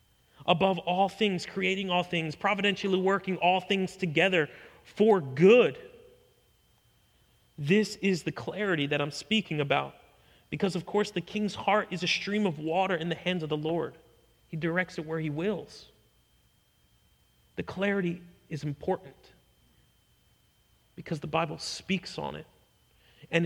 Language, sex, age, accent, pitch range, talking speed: English, male, 40-59, American, 150-190 Hz, 140 wpm